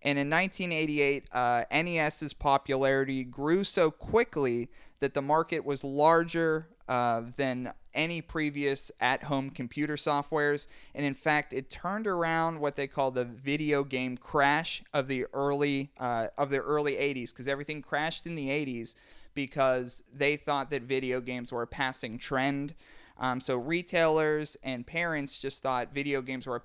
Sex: male